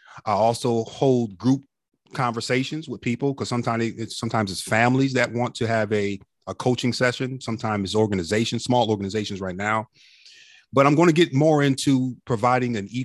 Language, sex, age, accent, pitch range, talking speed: English, male, 30-49, American, 105-130 Hz, 175 wpm